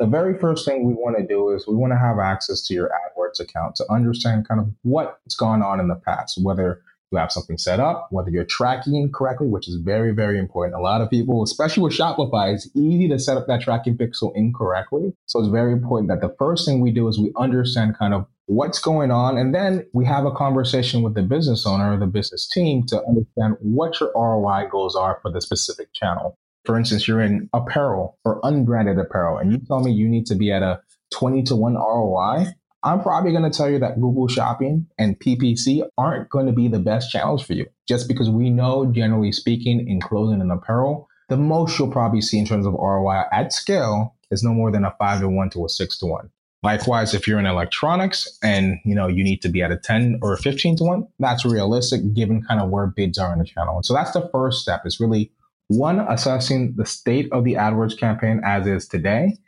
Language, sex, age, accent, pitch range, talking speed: English, male, 30-49, American, 100-130 Hz, 230 wpm